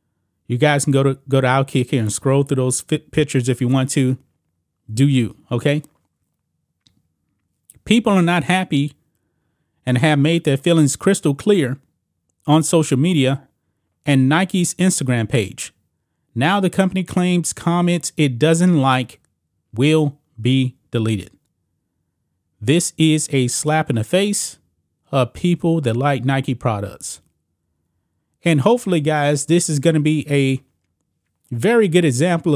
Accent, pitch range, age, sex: American, 115-160 Hz, 30-49, male